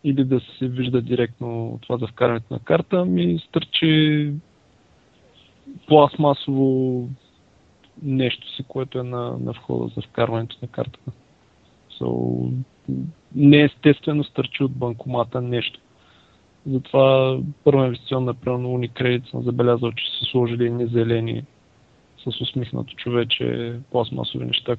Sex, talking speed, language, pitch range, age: male, 115 wpm, Bulgarian, 120-135 Hz, 20-39